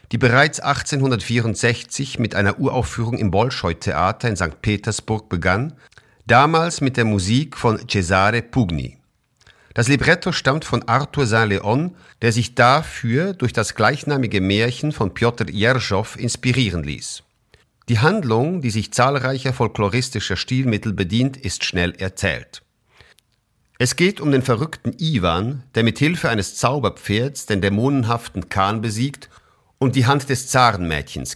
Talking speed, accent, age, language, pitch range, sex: 130 wpm, German, 50-69, German, 100-135 Hz, male